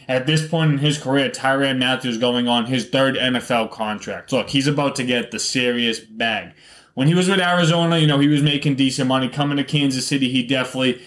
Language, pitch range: English, 120-145 Hz